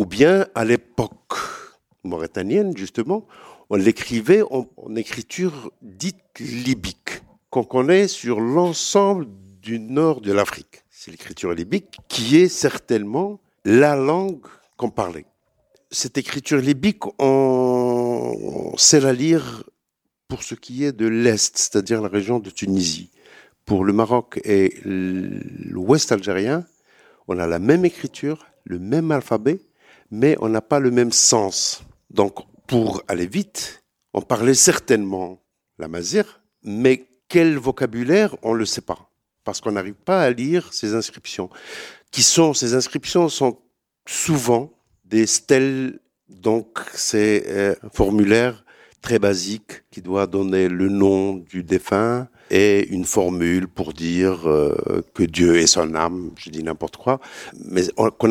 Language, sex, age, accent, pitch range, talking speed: French, male, 60-79, French, 100-140 Hz, 135 wpm